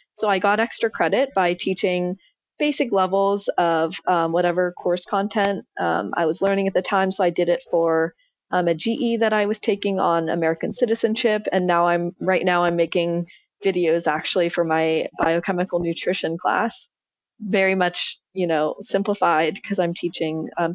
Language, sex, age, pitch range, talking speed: English, female, 20-39, 170-200 Hz, 170 wpm